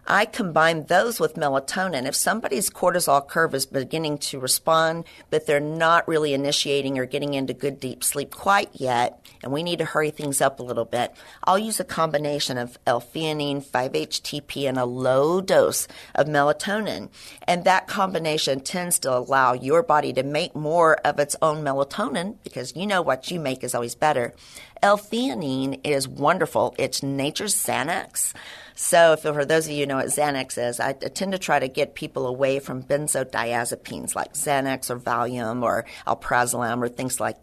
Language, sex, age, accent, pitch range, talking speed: English, female, 50-69, American, 130-165 Hz, 175 wpm